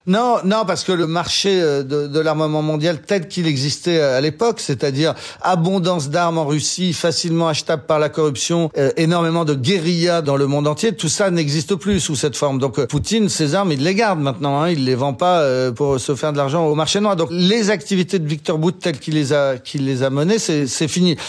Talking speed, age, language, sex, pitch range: 225 wpm, 40-59, French, male, 135-175 Hz